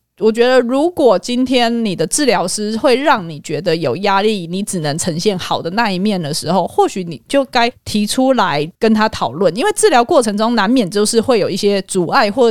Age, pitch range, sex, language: 20-39, 190-255 Hz, female, Chinese